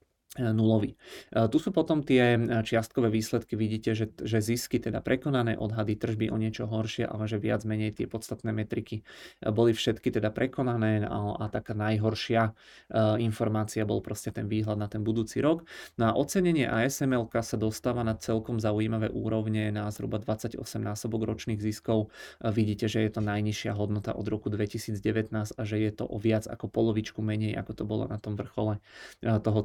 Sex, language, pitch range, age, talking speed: male, Czech, 105-115 Hz, 30-49, 170 wpm